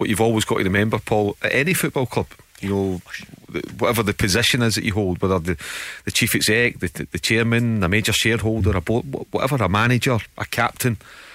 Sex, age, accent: male, 30-49, British